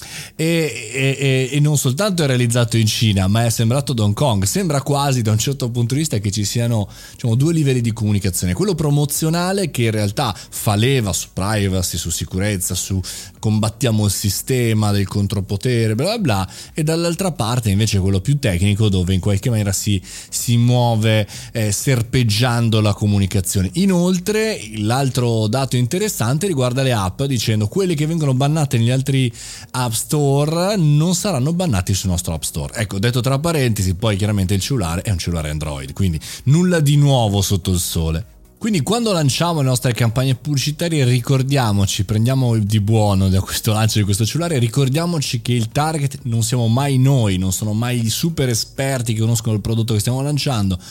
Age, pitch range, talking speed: 20-39, 100-140 Hz, 175 wpm